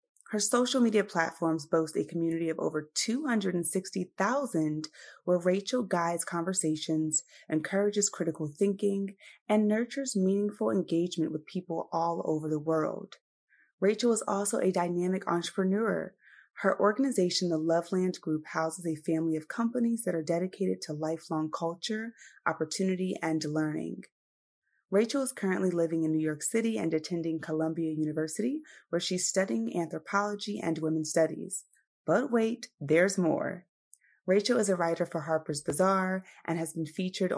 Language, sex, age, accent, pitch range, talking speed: English, female, 30-49, American, 165-215 Hz, 140 wpm